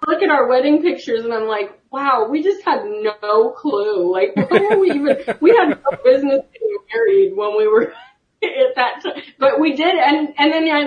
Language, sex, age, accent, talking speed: English, female, 30-49, American, 210 wpm